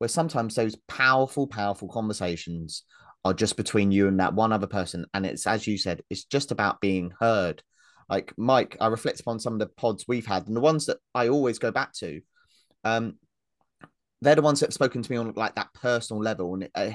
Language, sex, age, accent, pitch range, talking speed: English, male, 30-49, British, 95-120 Hz, 210 wpm